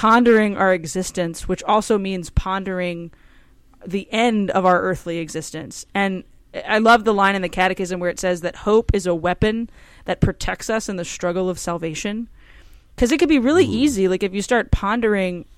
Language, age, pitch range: English, 20-39, 180-215 Hz